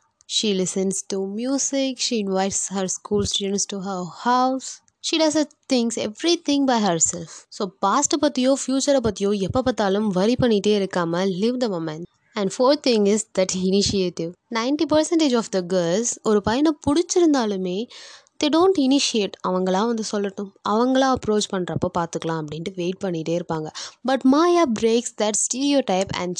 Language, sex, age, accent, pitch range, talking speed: Tamil, female, 20-39, native, 190-265 Hz, 165 wpm